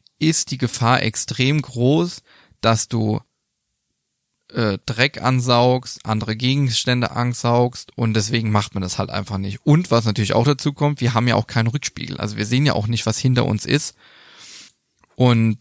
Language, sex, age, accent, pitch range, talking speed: German, male, 20-39, German, 110-135 Hz, 170 wpm